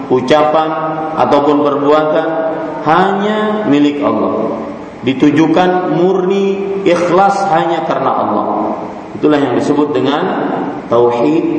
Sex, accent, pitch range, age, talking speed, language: male, Indonesian, 150-185 Hz, 40-59, 90 wpm, English